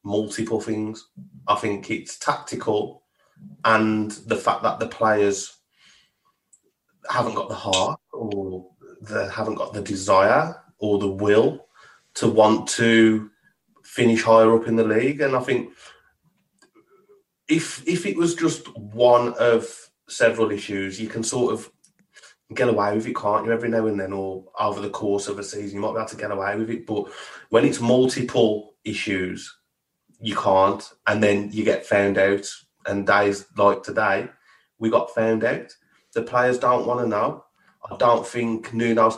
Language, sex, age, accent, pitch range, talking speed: English, male, 30-49, British, 105-120 Hz, 165 wpm